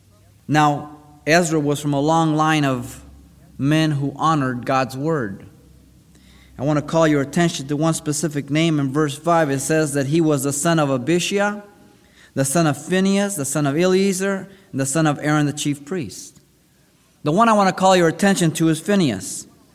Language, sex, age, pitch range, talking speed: English, male, 30-49, 150-205 Hz, 190 wpm